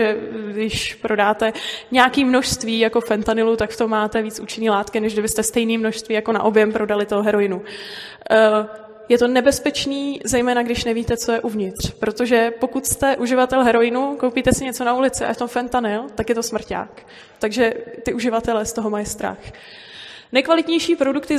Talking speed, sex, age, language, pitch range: 165 wpm, female, 20-39, Czech, 220-265 Hz